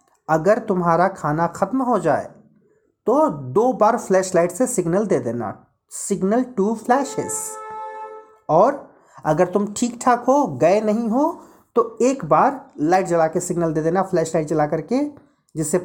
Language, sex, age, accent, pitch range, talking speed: Hindi, male, 40-59, native, 165-240 Hz, 150 wpm